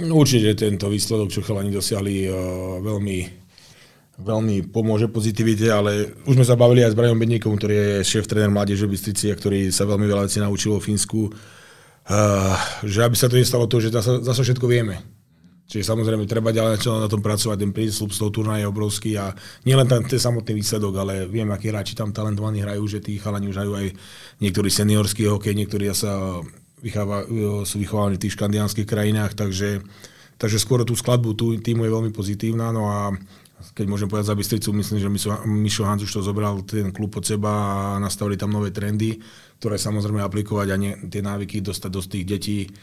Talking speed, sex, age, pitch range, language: 190 wpm, male, 30-49, 95-110 Hz, Slovak